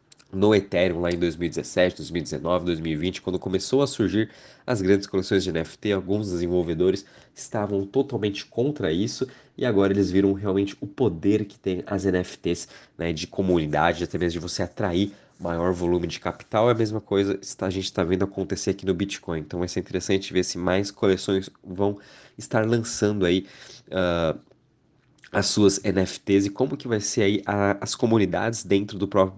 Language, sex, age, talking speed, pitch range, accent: Portuguese, male, 20-39, 170 wpm, 95-115 Hz, Brazilian